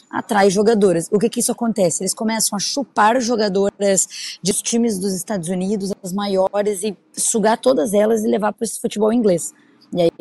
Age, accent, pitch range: 20-39, Brazilian, 185-230 Hz